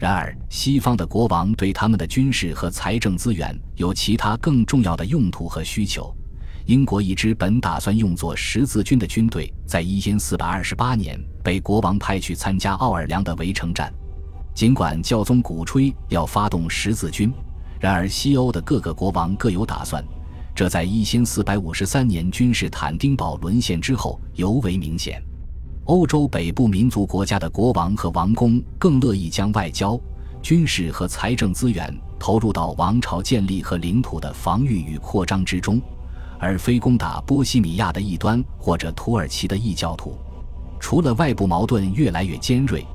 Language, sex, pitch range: Chinese, male, 80-110 Hz